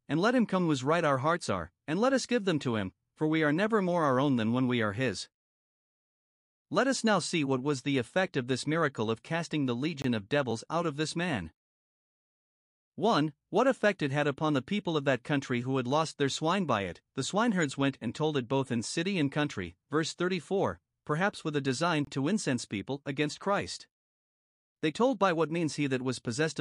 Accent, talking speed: American, 220 wpm